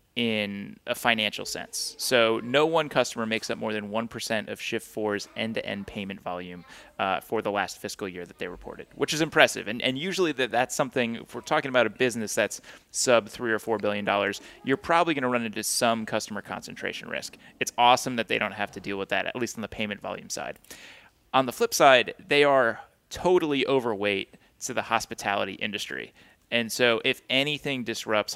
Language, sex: English, male